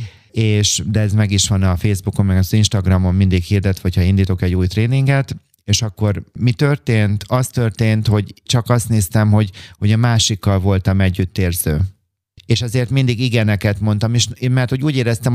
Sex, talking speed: male, 175 wpm